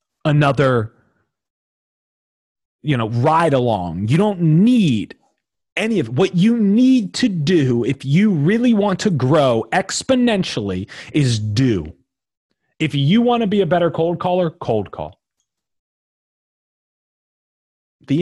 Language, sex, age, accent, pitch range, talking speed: English, male, 30-49, American, 95-165 Hz, 120 wpm